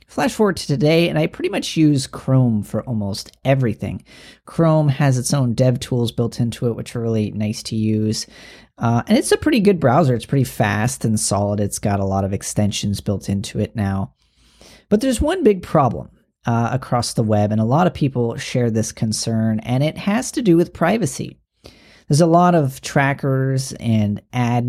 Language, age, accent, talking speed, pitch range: English, 40-59, American, 195 wpm, 110-150 Hz